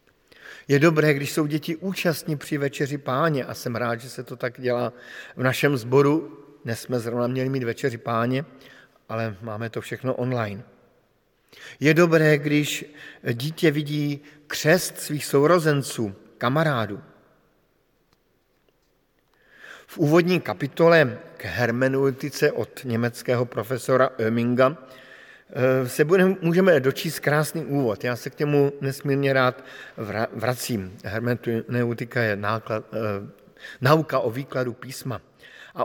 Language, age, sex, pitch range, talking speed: Slovak, 50-69, male, 125-155 Hz, 115 wpm